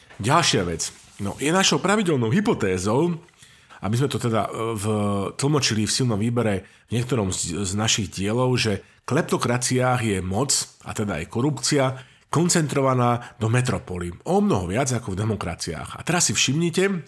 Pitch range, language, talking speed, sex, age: 105-135 Hz, Slovak, 155 wpm, male, 50-69